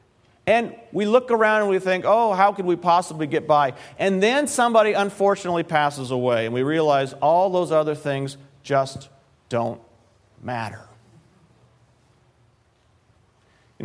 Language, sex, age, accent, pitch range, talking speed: English, male, 40-59, American, 130-185 Hz, 135 wpm